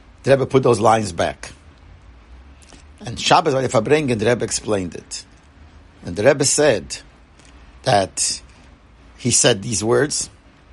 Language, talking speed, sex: English, 125 wpm, male